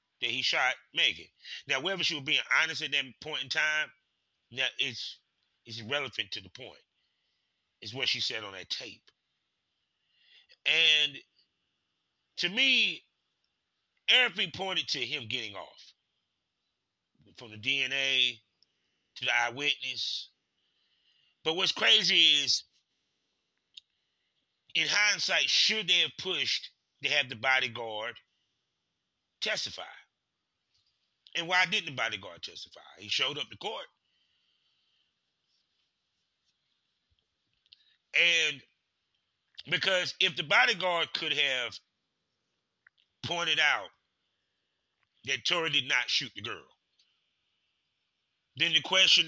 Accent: American